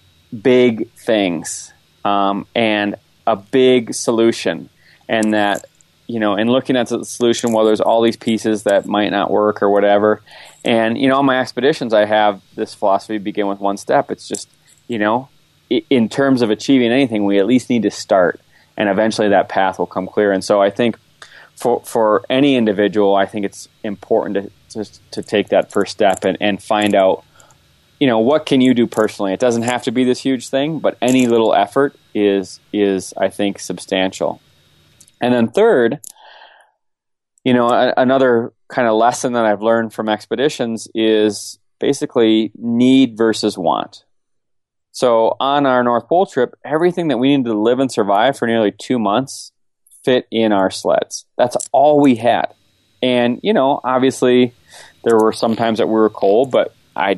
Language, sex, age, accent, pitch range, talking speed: English, male, 20-39, American, 105-125 Hz, 180 wpm